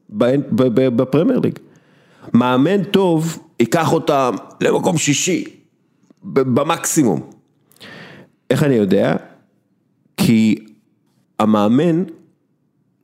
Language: Hebrew